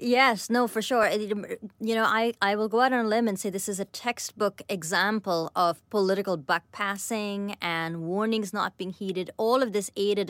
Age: 20-39